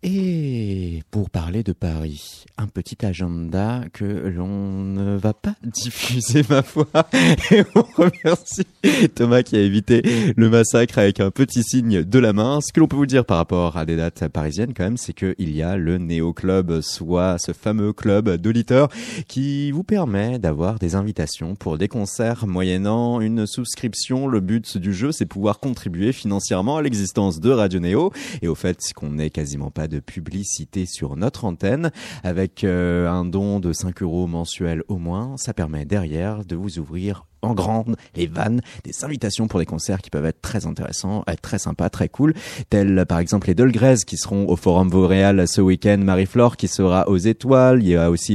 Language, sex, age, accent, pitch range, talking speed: French, male, 30-49, French, 85-115 Hz, 185 wpm